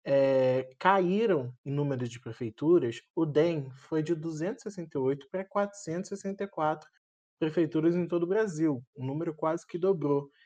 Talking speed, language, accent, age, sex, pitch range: 140 wpm, Portuguese, Brazilian, 20-39, male, 140-185 Hz